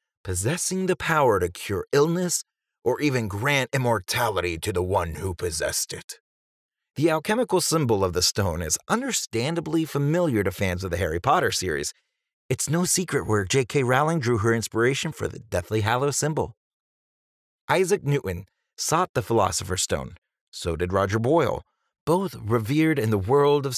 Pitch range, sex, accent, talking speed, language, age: 100-155 Hz, male, American, 155 wpm, English, 30-49